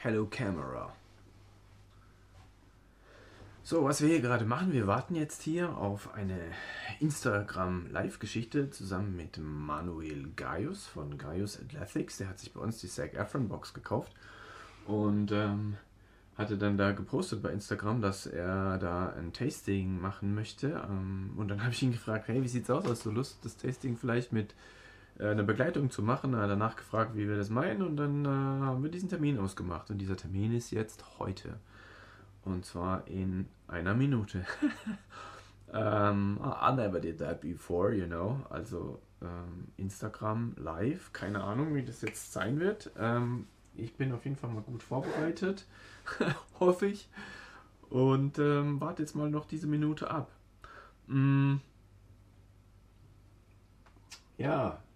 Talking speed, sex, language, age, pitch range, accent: 140 wpm, male, English, 30-49, 95-130 Hz, German